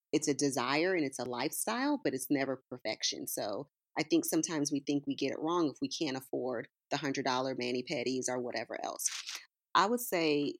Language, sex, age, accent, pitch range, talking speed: English, female, 30-49, American, 135-165 Hz, 190 wpm